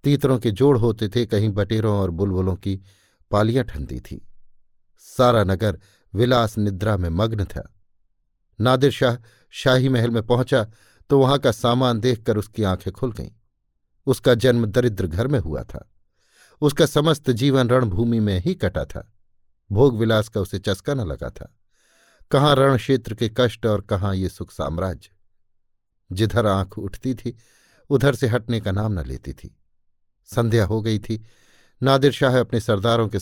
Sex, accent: male, native